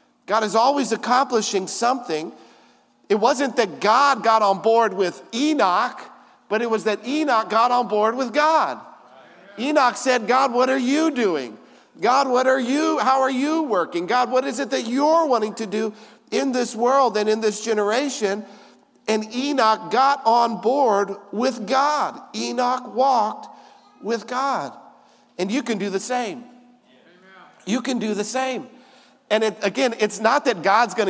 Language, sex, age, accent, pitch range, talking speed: English, male, 50-69, American, 200-260 Hz, 165 wpm